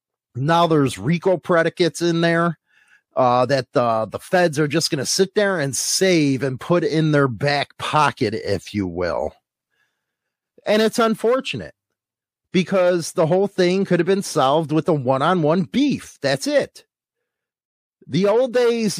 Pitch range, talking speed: 150-185 Hz, 150 wpm